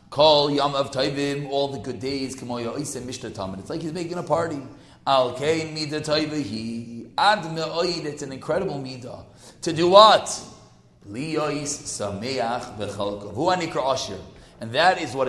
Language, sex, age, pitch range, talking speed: English, male, 30-49, 125-175 Hz, 90 wpm